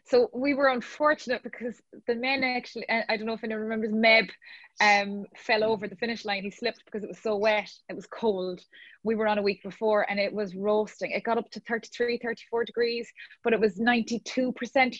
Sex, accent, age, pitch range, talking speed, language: female, Irish, 20-39, 185-225 Hz, 210 wpm, English